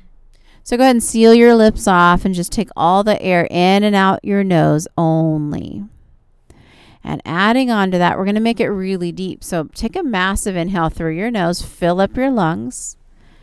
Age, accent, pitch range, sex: 40-59, American, 170-220 Hz, female